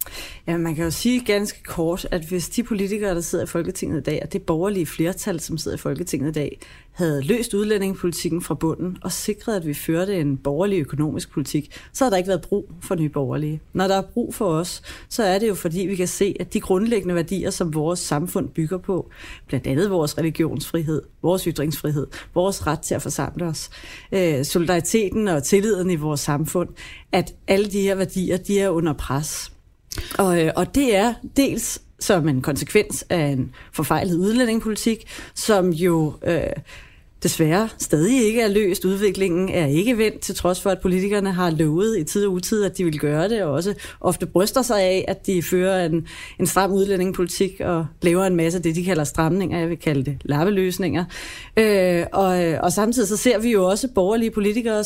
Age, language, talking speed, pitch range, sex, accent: 30-49, Danish, 190 wpm, 160-200 Hz, female, native